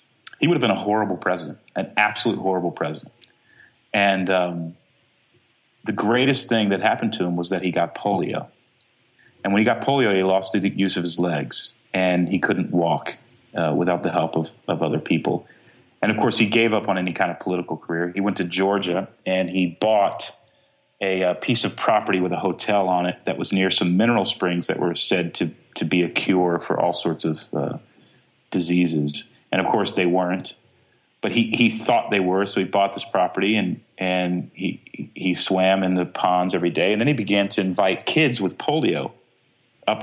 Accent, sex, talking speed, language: American, male, 200 wpm, English